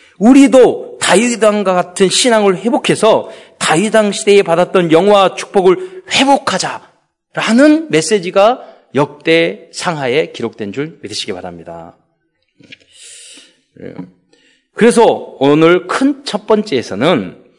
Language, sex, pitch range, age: Korean, male, 160-235 Hz, 40-59